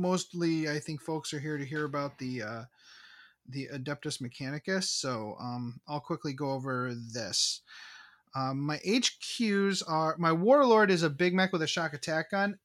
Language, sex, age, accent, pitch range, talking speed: English, male, 30-49, American, 135-185 Hz, 170 wpm